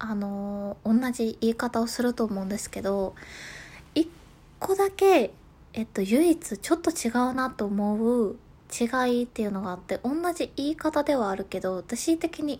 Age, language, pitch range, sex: 20-39, Japanese, 215-300 Hz, female